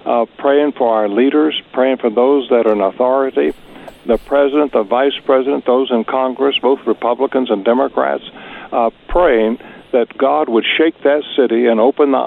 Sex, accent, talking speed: male, American, 170 wpm